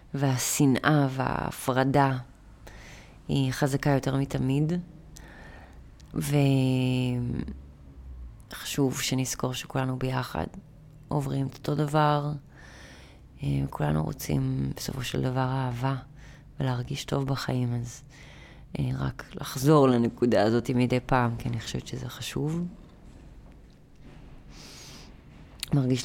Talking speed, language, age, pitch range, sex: 85 wpm, Hebrew, 20-39, 125-145 Hz, female